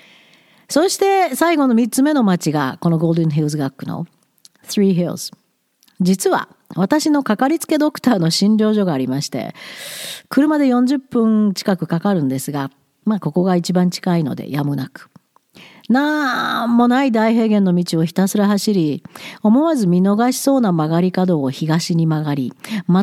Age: 50-69